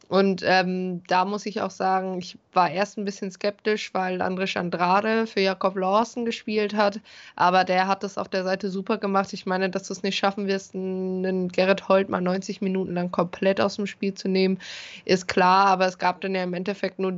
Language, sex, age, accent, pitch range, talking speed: German, female, 20-39, German, 185-205 Hz, 215 wpm